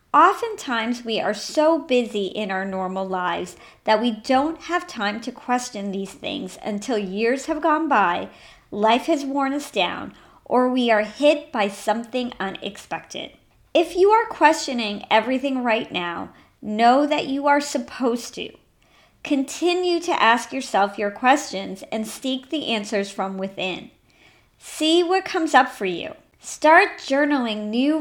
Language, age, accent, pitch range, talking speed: English, 40-59, American, 205-295 Hz, 150 wpm